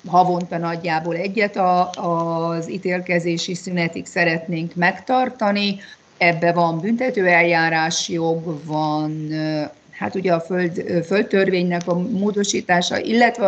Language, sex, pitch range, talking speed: Hungarian, female, 160-195 Hz, 100 wpm